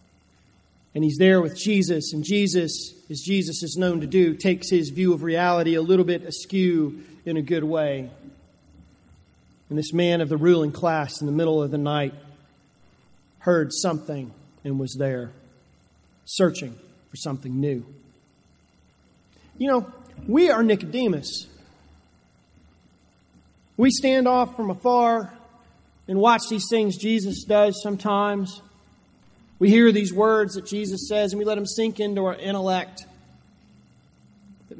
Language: English